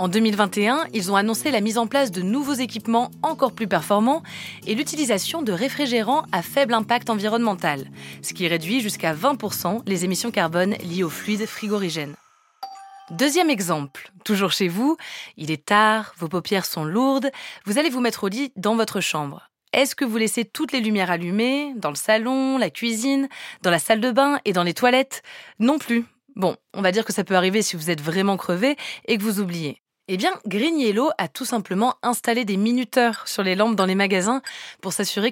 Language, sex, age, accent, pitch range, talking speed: French, female, 20-39, French, 185-250 Hz, 195 wpm